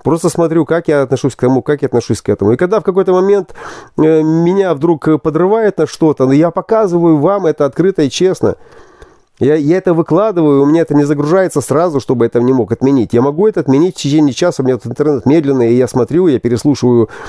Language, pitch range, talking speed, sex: Russian, 130-170 Hz, 215 wpm, male